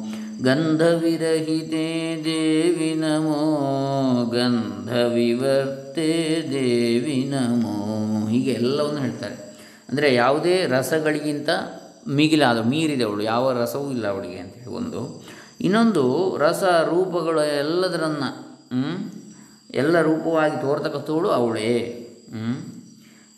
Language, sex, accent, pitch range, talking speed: Kannada, male, native, 120-155 Hz, 80 wpm